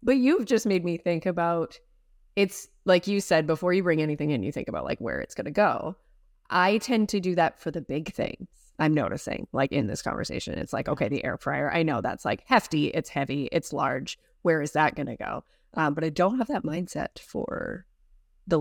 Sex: female